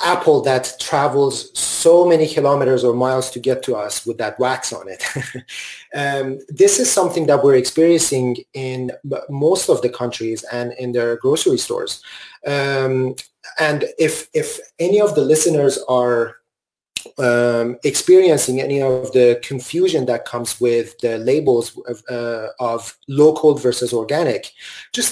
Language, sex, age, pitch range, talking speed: English, male, 30-49, 125-185 Hz, 145 wpm